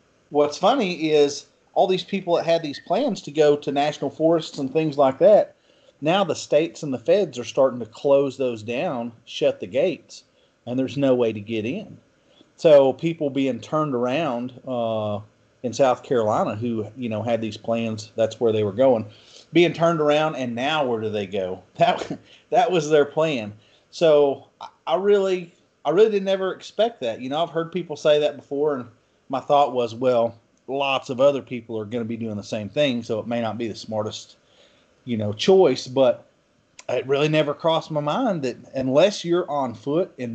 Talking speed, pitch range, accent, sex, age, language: 195 wpm, 115-155 Hz, American, male, 40-59, English